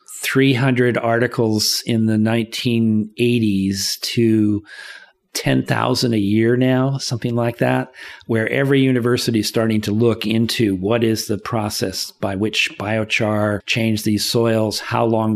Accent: American